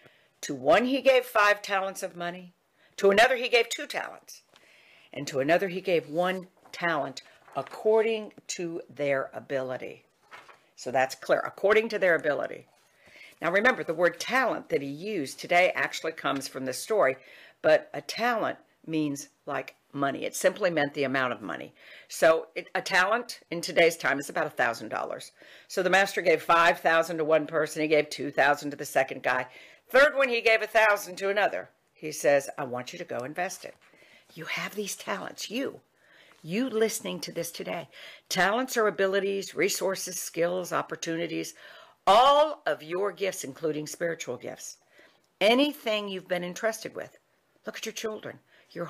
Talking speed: 165 wpm